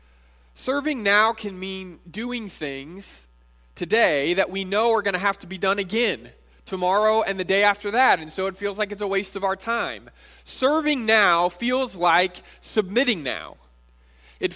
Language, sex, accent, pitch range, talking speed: English, male, American, 155-220 Hz, 175 wpm